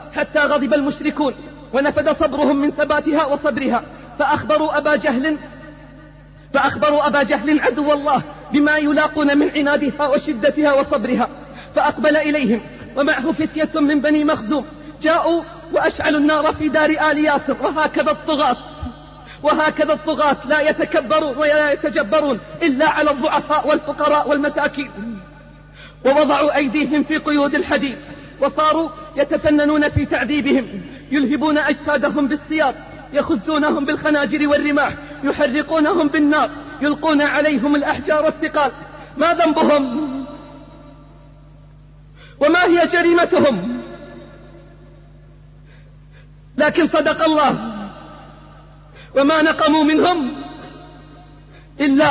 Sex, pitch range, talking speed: female, 280-305 Hz, 90 wpm